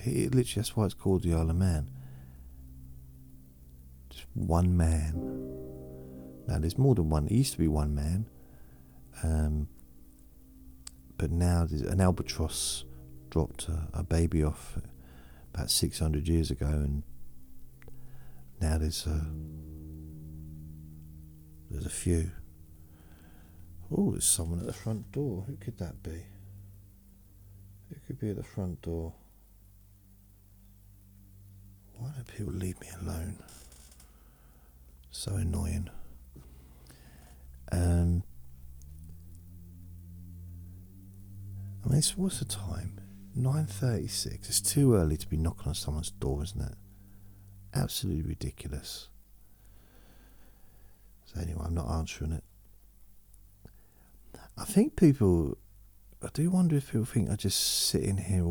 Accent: British